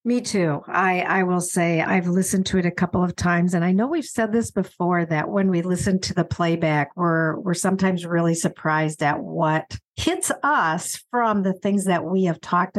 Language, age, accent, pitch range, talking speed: English, 50-69, American, 180-240 Hz, 205 wpm